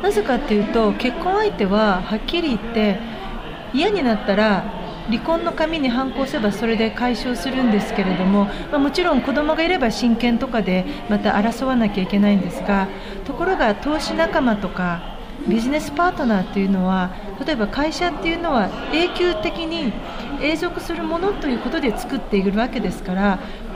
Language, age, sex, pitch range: Japanese, 40-59, female, 205-285 Hz